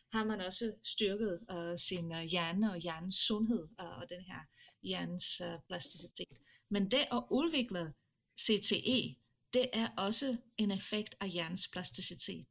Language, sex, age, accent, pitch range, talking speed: Danish, female, 30-49, native, 180-225 Hz, 150 wpm